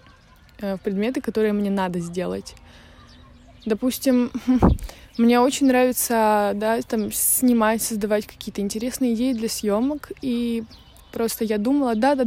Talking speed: 115 wpm